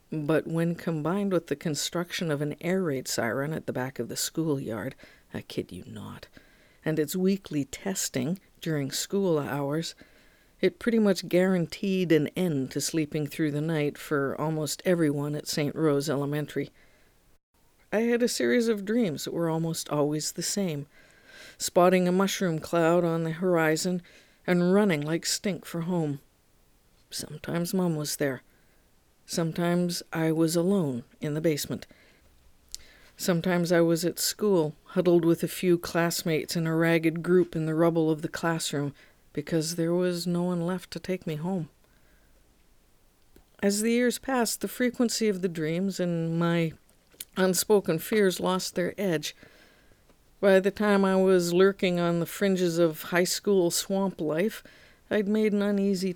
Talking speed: 155 wpm